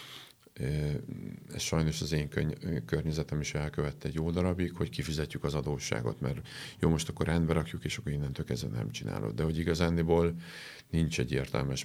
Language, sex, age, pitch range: Hungarian, male, 40-59, 70-85 Hz